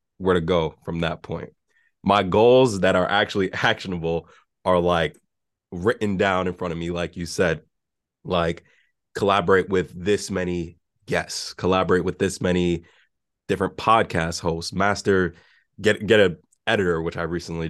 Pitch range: 85-95 Hz